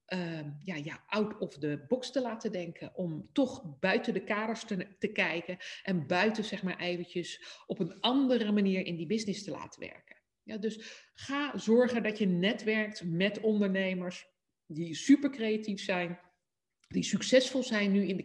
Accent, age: Dutch, 50-69